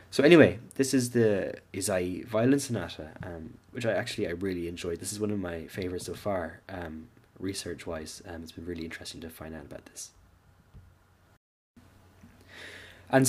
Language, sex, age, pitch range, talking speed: English, male, 10-29, 90-115 Hz, 165 wpm